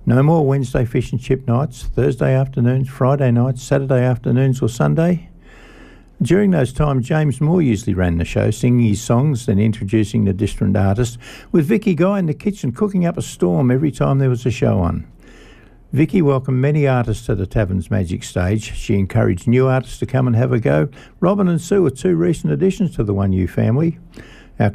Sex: male